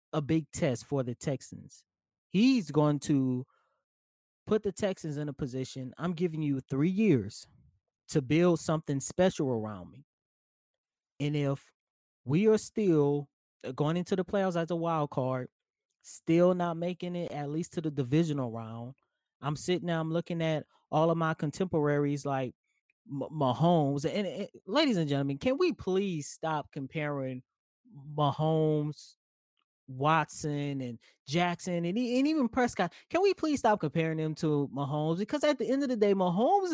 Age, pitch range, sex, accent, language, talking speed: 20-39, 145-190 Hz, male, American, English, 155 wpm